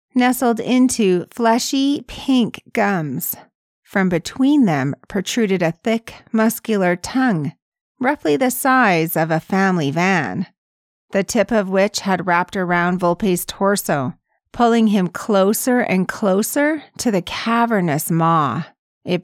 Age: 40-59